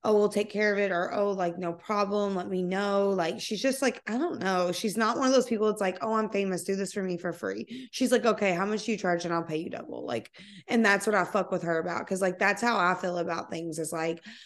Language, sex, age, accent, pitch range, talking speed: English, female, 20-39, American, 175-210 Hz, 290 wpm